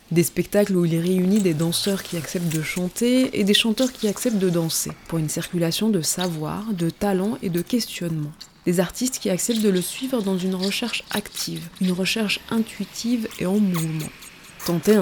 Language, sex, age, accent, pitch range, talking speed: French, female, 20-39, French, 175-215 Hz, 185 wpm